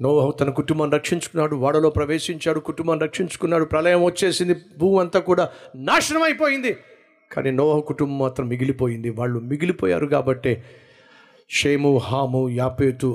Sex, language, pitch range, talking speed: male, Telugu, 120-150 Hz, 120 wpm